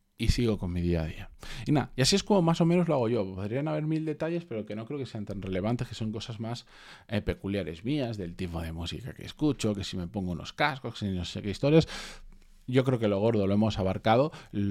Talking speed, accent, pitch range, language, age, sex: 260 wpm, Spanish, 100-130 Hz, Spanish, 20-39, male